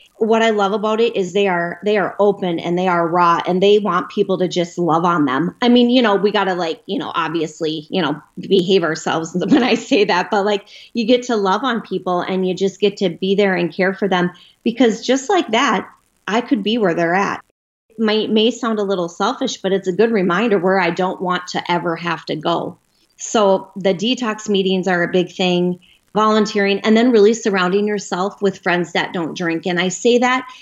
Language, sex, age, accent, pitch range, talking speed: English, female, 30-49, American, 180-220 Hz, 225 wpm